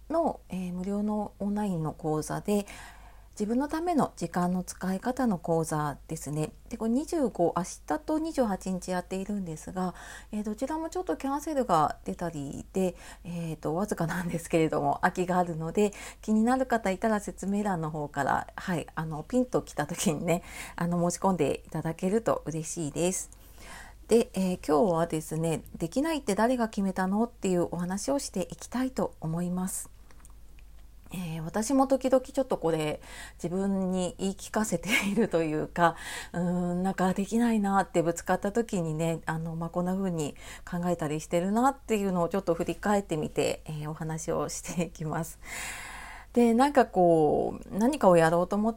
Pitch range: 165-215 Hz